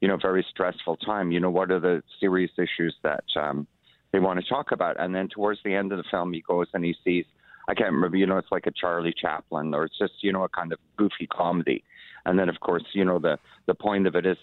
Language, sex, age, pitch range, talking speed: English, male, 40-59, 85-95 Hz, 265 wpm